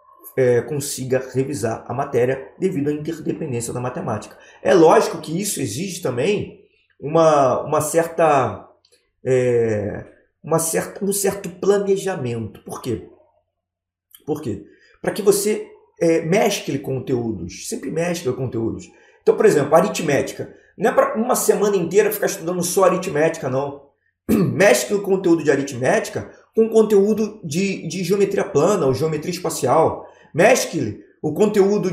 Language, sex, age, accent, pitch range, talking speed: Portuguese, male, 20-39, Brazilian, 140-205 Hz, 130 wpm